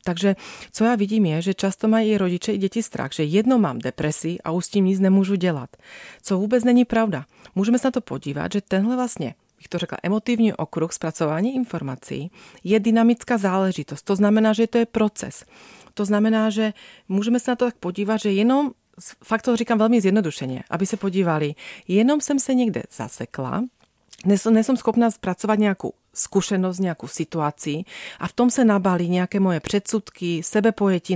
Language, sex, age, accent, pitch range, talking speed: Czech, female, 30-49, native, 175-225 Hz, 180 wpm